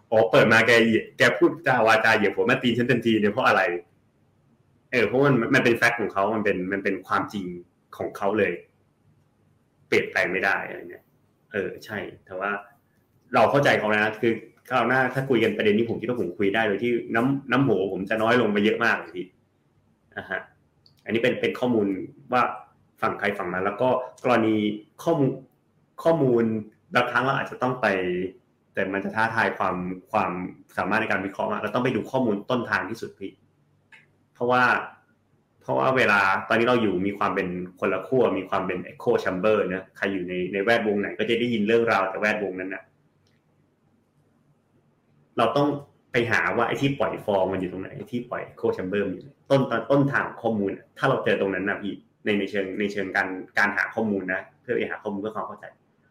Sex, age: male, 30-49